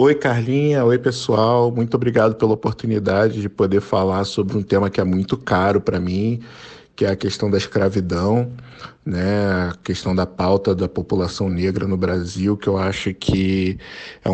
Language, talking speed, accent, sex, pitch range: Portuguese, 170 wpm, Brazilian, male, 100-125 Hz